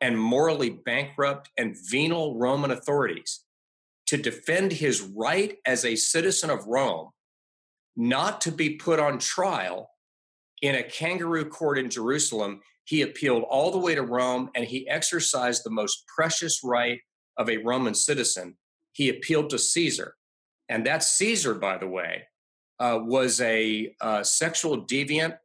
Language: English